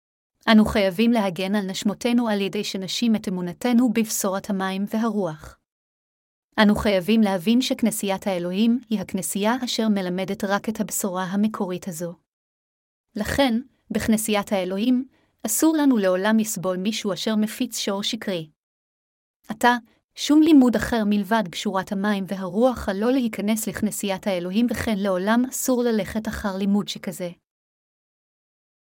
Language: Hebrew